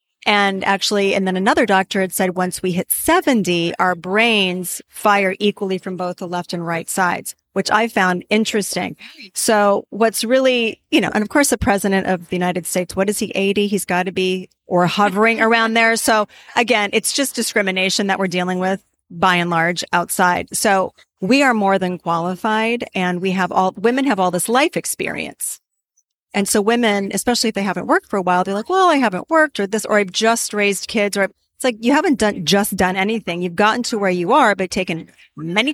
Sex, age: female, 40-59